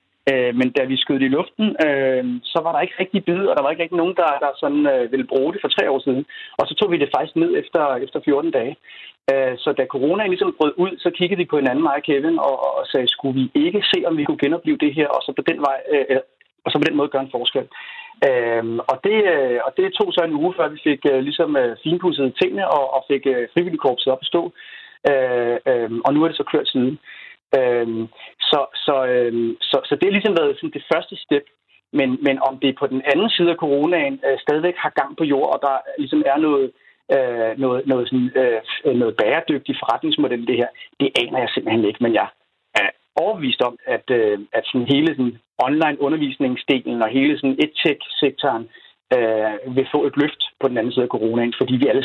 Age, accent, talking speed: 30-49, native, 225 wpm